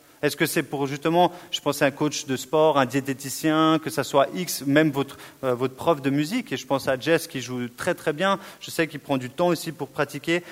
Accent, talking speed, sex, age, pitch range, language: French, 250 wpm, male, 30-49, 135-180 Hz, French